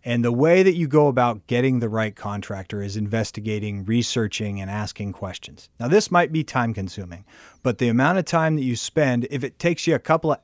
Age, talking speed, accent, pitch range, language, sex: 30-49, 215 wpm, American, 110-140 Hz, English, male